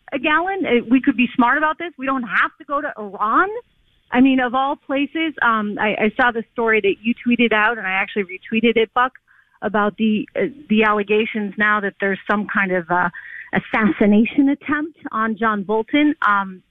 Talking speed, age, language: 195 wpm, 40-59, English